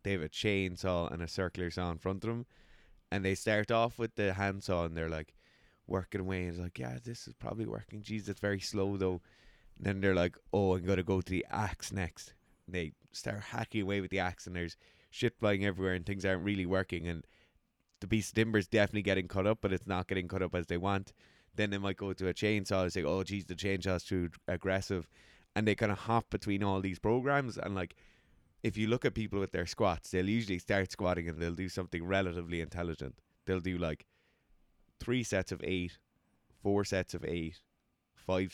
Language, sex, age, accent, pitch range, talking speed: English, male, 20-39, Irish, 85-100 Hz, 215 wpm